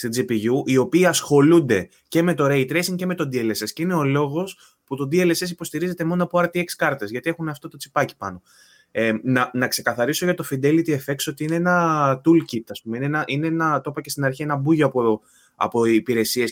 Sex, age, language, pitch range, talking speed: male, 20-39, Greek, 110-150 Hz, 220 wpm